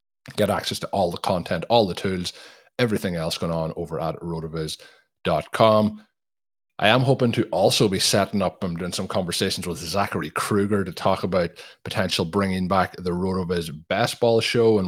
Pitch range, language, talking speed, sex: 90-110 Hz, English, 180 wpm, male